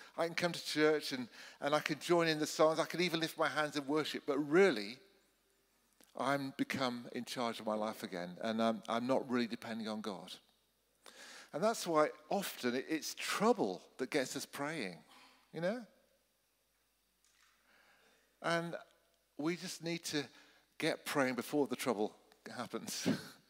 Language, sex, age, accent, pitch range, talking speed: English, male, 50-69, British, 120-160 Hz, 160 wpm